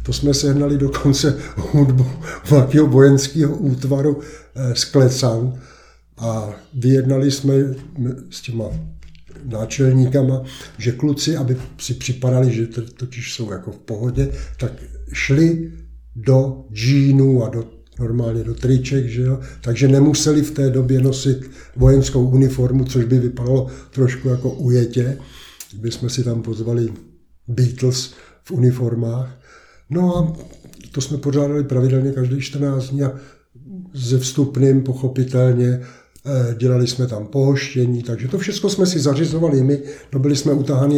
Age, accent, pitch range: 60-79, native, 125-145 Hz